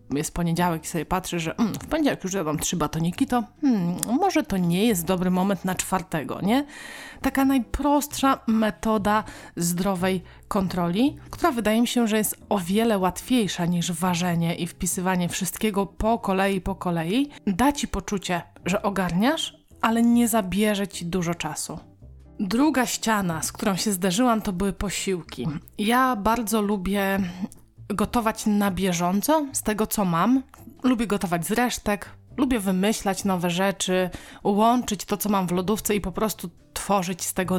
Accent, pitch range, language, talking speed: native, 185-230 Hz, Polish, 155 wpm